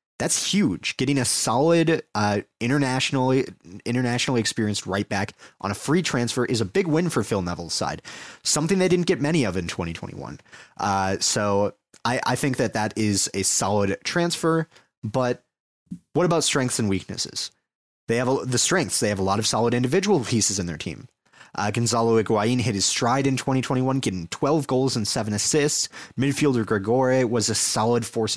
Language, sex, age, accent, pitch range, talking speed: English, male, 30-49, American, 105-145 Hz, 175 wpm